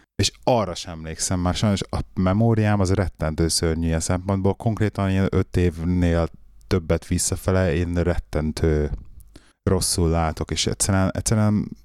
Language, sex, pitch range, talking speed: Hungarian, male, 85-105 Hz, 125 wpm